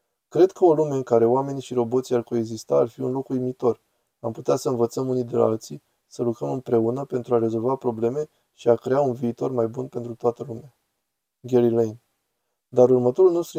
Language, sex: Romanian, male